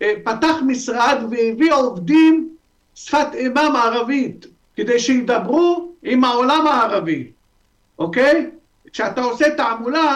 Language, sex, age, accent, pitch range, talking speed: Hebrew, male, 50-69, native, 235-320 Hz, 100 wpm